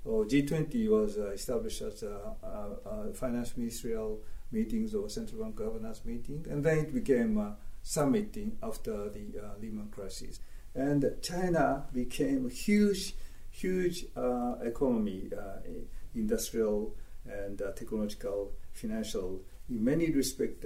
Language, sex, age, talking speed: English, male, 50-69, 135 wpm